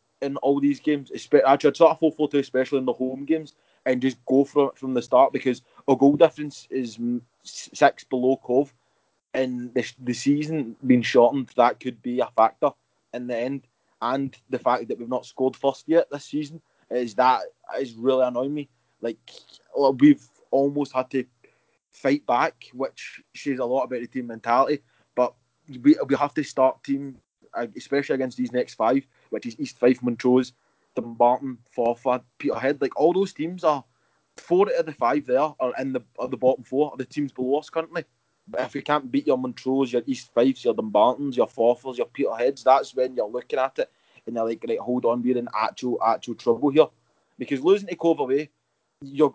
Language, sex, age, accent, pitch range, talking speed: English, male, 20-39, British, 125-145 Hz, 195 wpm